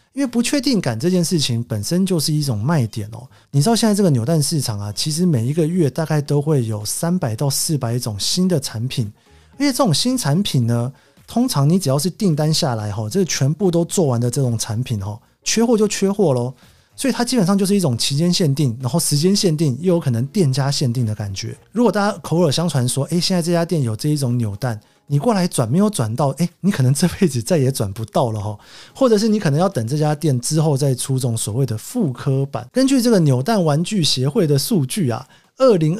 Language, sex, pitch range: Chinese, male, 125-180 Hz